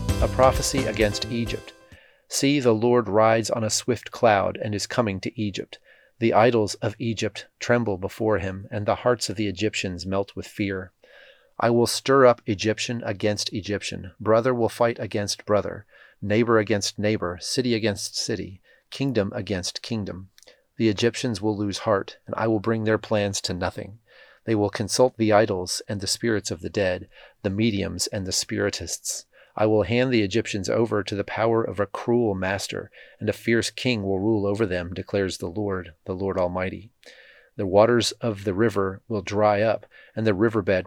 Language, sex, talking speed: English, male, 180 wpm